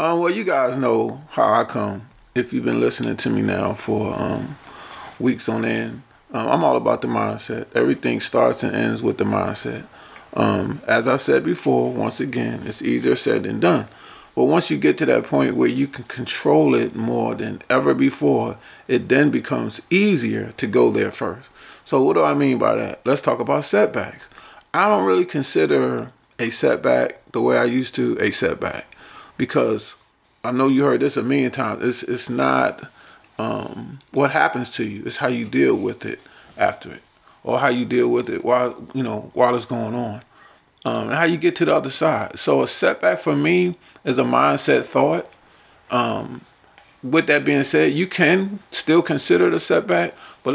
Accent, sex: American, male